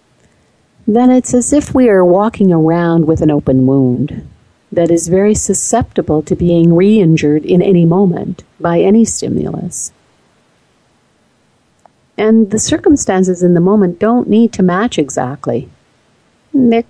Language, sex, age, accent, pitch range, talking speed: English, female, 50-69, American, 160-200 Hz, 130 wpm